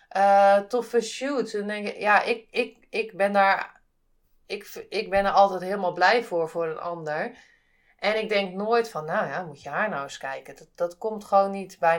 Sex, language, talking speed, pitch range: female, Dutch, 190 wpm, 170-210 Hz